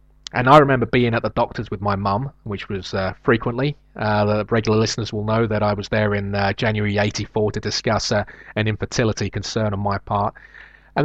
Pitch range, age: 100-115 Hz, 30-49